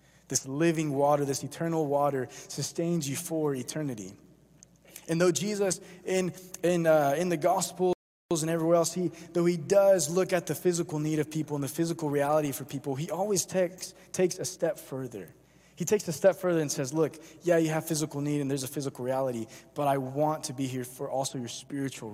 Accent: American